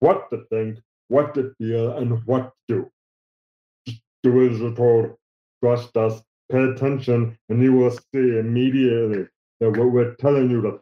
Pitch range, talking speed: 110-130 Hz, 160 wpm